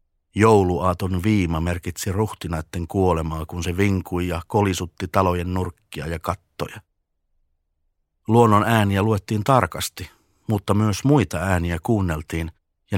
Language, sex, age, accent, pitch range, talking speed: Finnish, male, 50-69, native, 80-105 Hz, 110 wpm